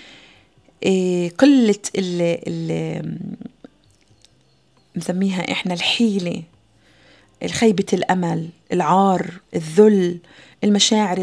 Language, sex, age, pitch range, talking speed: Arabic, female, 30-49, 175-220 Hz, 60 wpm